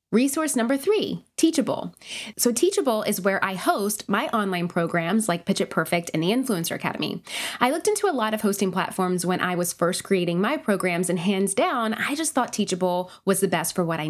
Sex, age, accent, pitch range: female, 20-39, American, 190-255 Hz